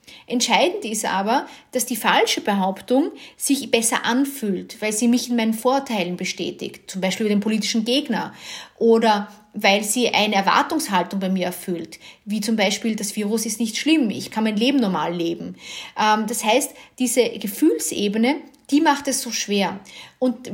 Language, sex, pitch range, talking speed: German, female, 210-270 Hz, 160 wpm